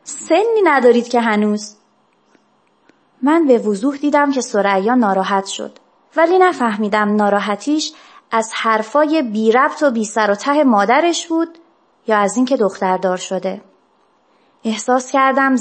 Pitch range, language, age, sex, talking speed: 210-290 Hz, Persian, 30-49, female, 125 wpm